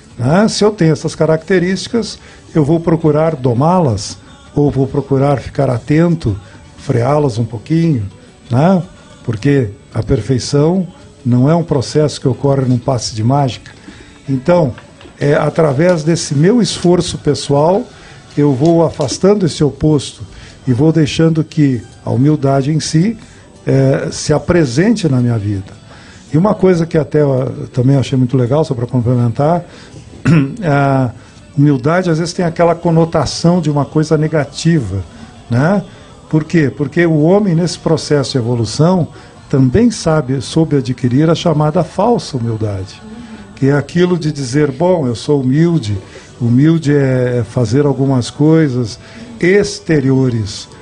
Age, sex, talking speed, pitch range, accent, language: 50-69, male, 135 wpm, 125-160 Hz, Brazilian, Portuguese